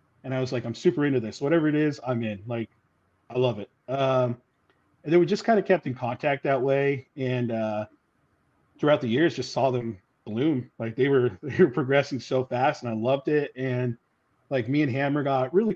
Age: 40-59